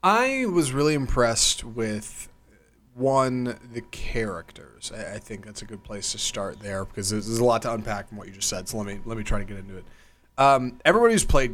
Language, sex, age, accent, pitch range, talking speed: English, male, 30-49, American, 110-160 Hz, 225 wpm